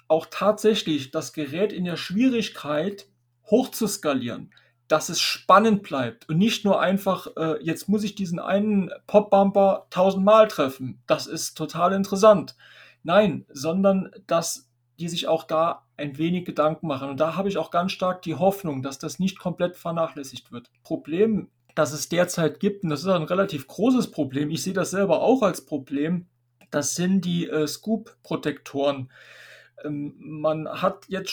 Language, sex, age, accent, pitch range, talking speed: German, male, 40-59, German, 150-195 Hz, 160 wpm